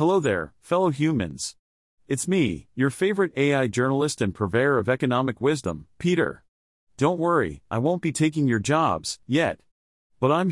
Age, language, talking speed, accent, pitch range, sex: 40-59, English, 155 wpm, American, 115-155 Hz, male